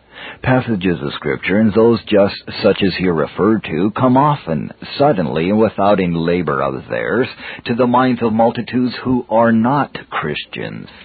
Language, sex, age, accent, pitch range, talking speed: English, male, 50-69, American, 100-125 Hz, 155 wpm